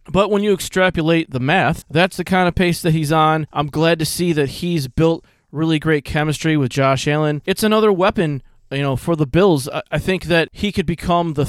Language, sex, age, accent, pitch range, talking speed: English, male, 20-39, American, 135-165 Hz, 220 wpm